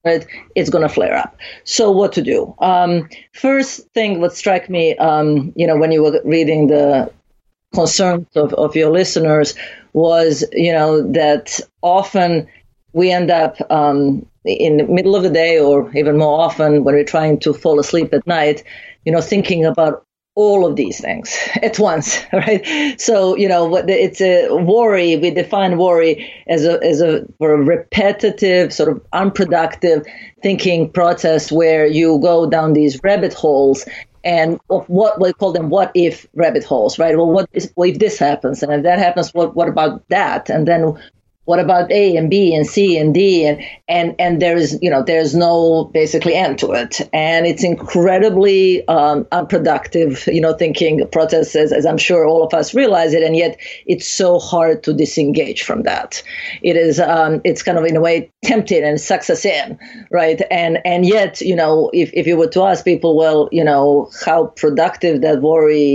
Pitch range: 155-185 Hz